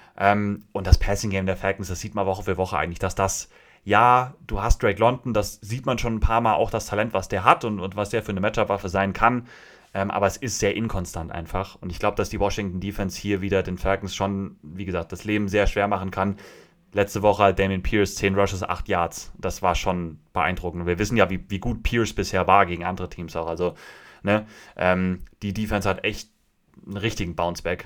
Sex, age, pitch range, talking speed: male, 30-49, 95-115 Hz, 225 wpm